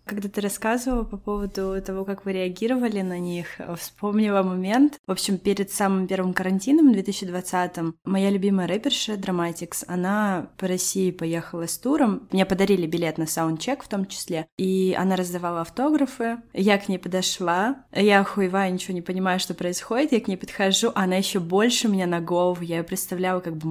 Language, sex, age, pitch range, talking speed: Russian, female, 20-39, 180-230 Hz, 170 wpm